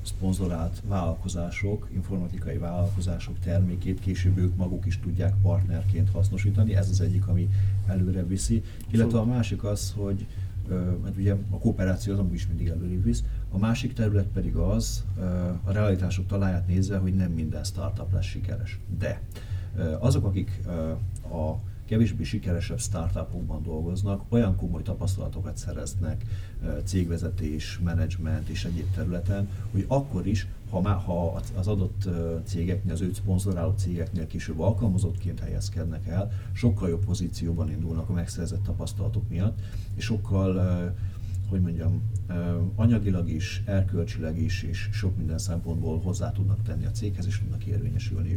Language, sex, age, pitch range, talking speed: Hungarian, male, 50-69, 90-100 Hz, 135 wpm